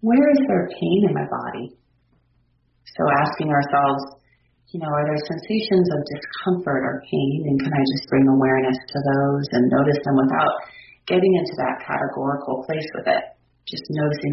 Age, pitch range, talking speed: 30-49, 135-160 Hz, 170 wpm